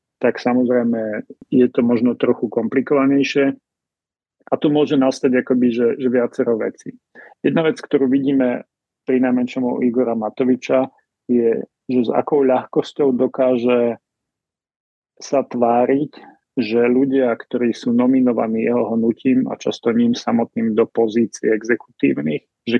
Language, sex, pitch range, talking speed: Slovak, male, 115-130 Hz, 125 wpm